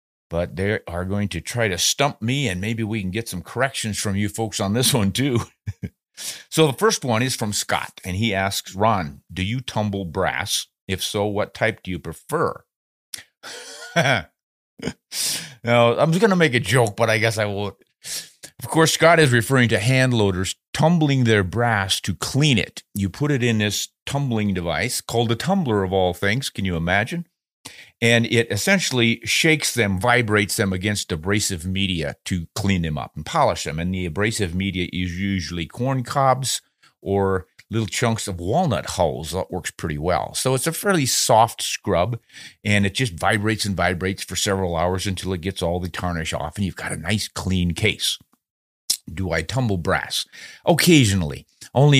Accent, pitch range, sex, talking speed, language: American, 95-120 Hz, male, 180 wpm, English